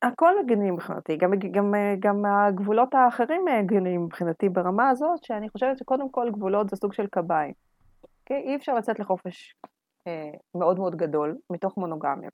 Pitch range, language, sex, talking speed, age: 185-255 Hz, Hebrew, female, 150 wpm, 30-49